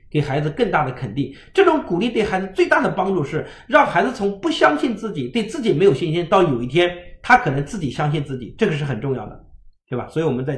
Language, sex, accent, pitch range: Chinese, male, native, 130-200 Hz